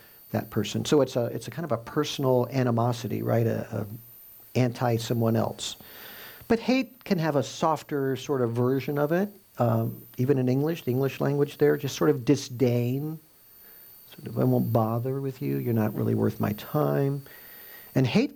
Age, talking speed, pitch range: 50-69, 185 wpm, 120-175 Hz